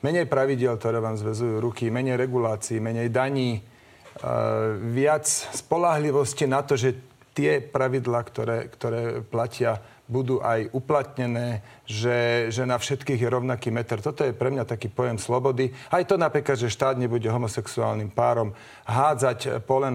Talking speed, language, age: 145 wpm, Slovak, 40-59